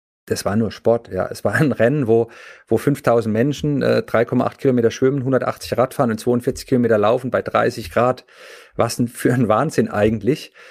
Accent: German